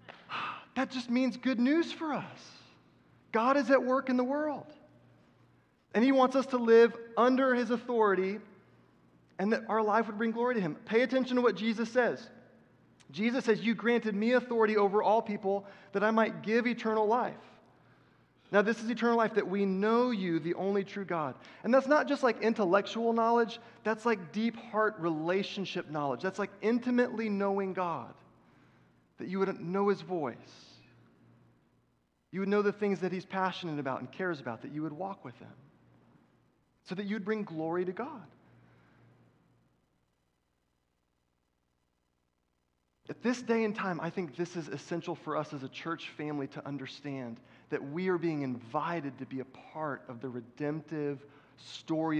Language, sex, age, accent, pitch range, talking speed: English, male, 30-49, American, 135-225 Hz, 170 wpm